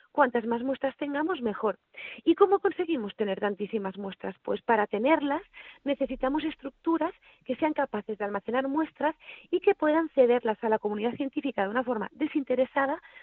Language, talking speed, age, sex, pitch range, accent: Spanish, 155 wpm, 30-49, female, 225-300 Hz, Spanish